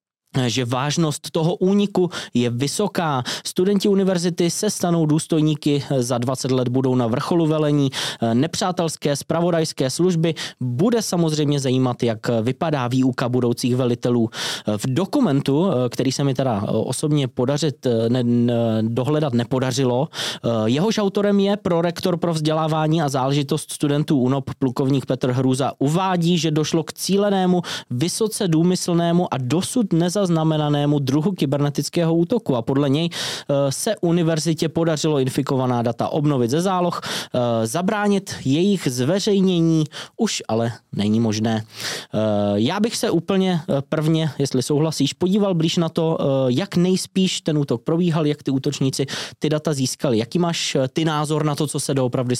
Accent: native